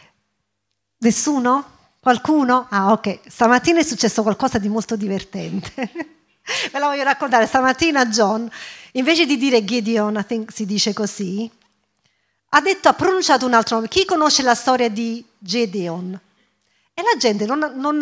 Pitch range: 220-300 Hz